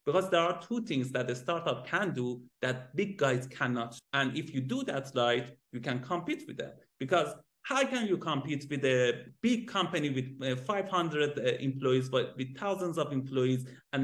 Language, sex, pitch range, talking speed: English, male, 130-190 Hz, 185 wpm